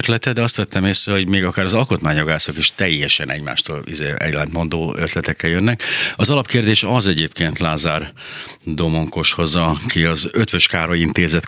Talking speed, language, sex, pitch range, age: 145 wpm, Hungarian, male, 85-110 Hz, 60-79